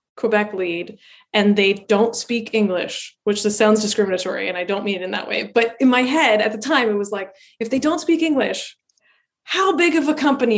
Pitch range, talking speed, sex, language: 210-265 Hz, 220 wpm, female, English